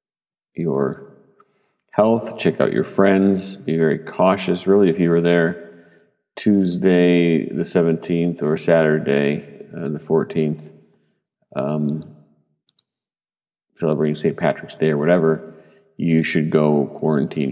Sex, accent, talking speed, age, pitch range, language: male, American, 115 wpm, 50-69, 80-120 Hz, English